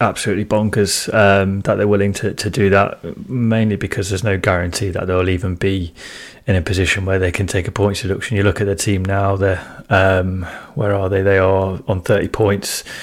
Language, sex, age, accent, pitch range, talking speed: English, male, 30-49, British, 95-105 Hz, 205 wpm